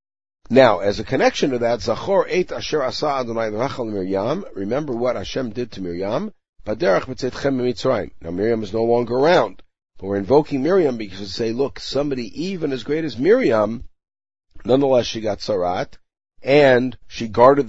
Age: 50-69